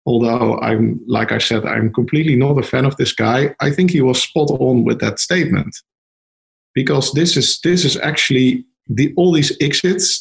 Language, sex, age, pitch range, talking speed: English, male, 50-69, 115-145 Hz, 190 wpm